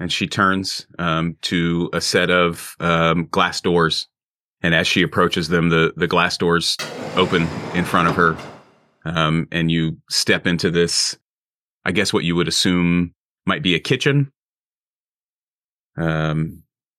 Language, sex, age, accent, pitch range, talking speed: English, male, 30-49, American, 80-95 Hz, 150 wpm